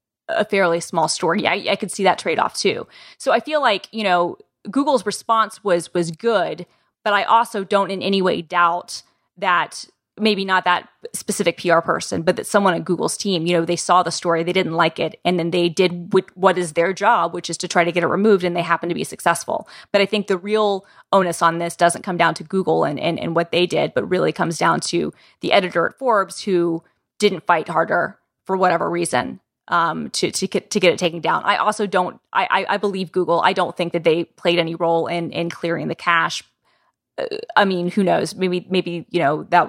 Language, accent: English, American